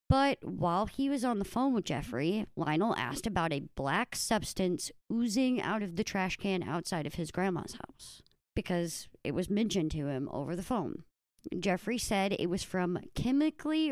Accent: American